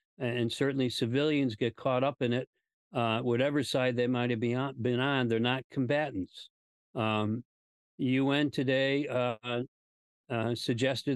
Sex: male